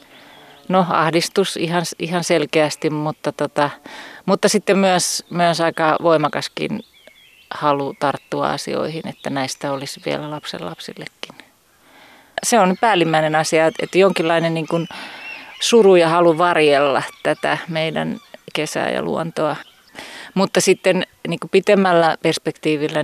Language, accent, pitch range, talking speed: Finnish, native, 150-175 Hz, 115 wpm